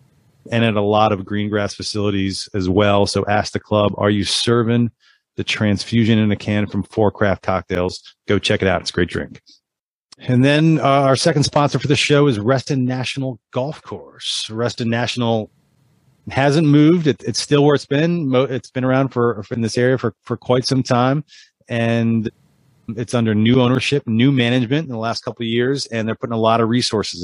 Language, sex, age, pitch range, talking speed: English, male, 30-49, 105-130 Hz, 195 wpm